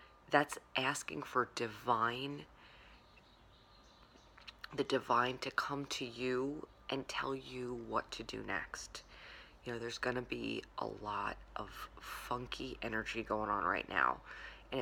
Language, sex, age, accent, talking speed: English, female, 20-39, American, 130 wpm